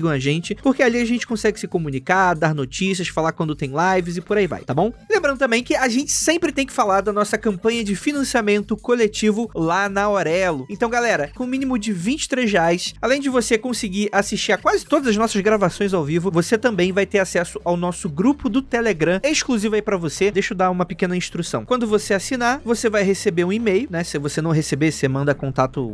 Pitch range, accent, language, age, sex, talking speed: 180-230 Hz, Brazilian, Portuguese, 20-39, male, 220 wpm